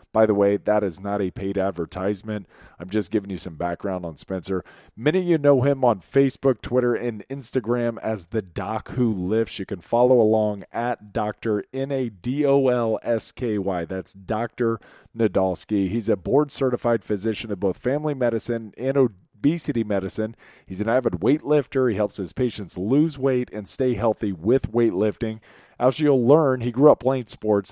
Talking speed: 165 wpm